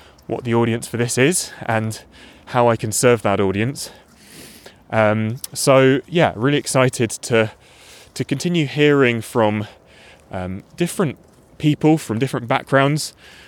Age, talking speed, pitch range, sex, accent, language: 20-39, 130 wpm, 110-135 Hz, male, British, English